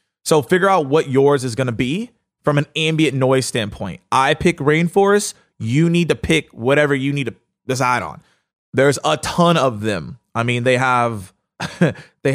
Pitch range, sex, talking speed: 125-160 Hz, male, 180 wpm